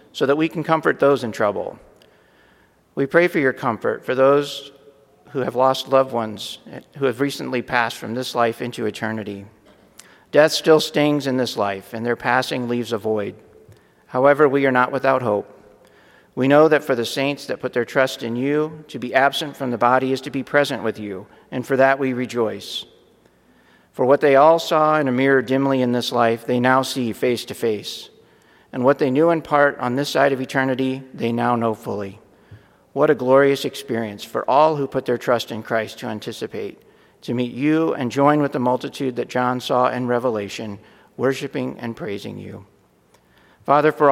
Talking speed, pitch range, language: 195 wpm, 120-140 Hz, English